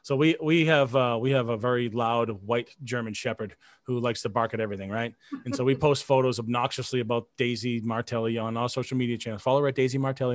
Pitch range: 125-155 Hz